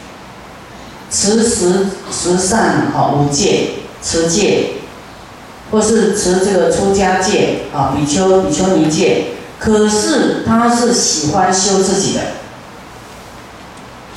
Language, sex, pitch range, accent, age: Chinese, female, 160-215 Hz, native, 40-59